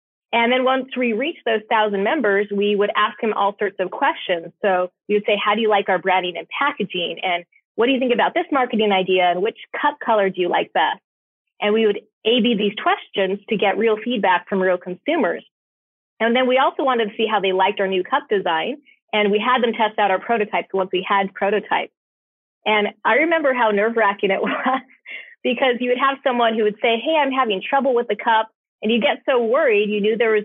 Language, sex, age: English, female, 30-49